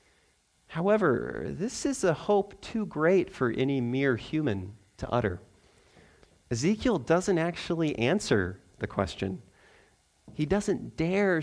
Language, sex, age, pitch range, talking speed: English, male, 30-49, 120-170 Hz, 115 wpm